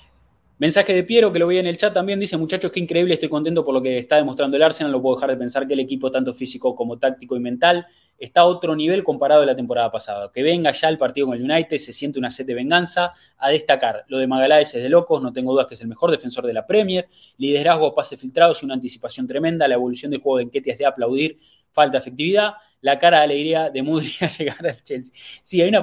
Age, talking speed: 20-39, 255 wpm